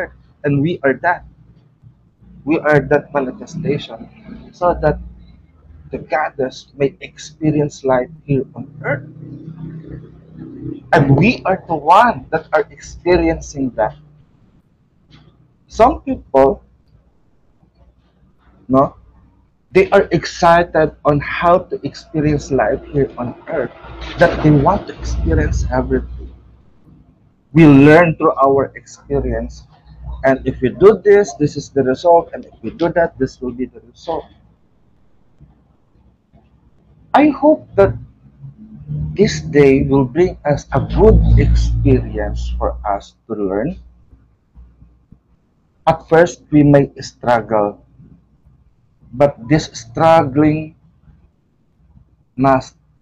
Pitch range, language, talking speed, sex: 130-160 Hz, English, 110 wpm, male